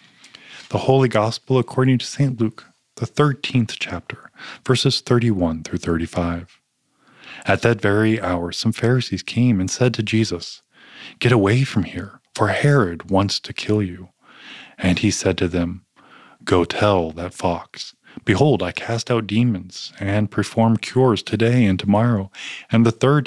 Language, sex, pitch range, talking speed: English, male, 95-120 Hz, 150 wpm